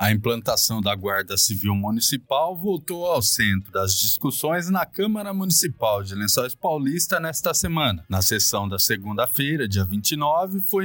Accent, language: Brazilian, Portuguese